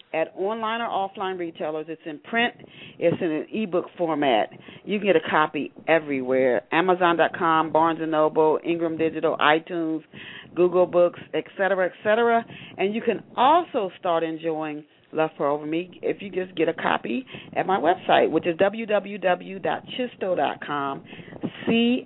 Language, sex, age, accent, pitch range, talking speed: English, female, 40-59, American, 160-220 Hz, 145 wpm